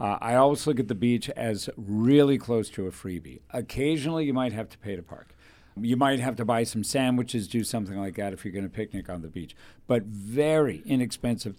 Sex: male